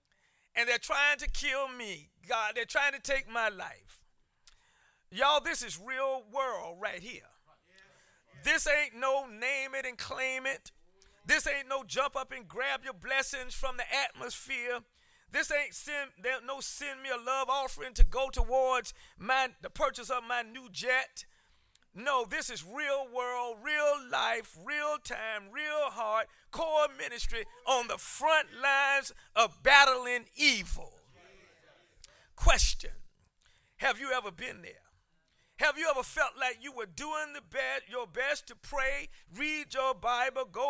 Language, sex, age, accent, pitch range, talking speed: English, male, 40-59, American, 250-290 Hz, 145 wpm